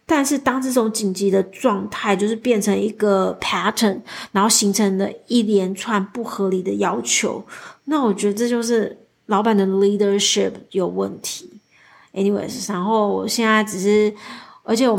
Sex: female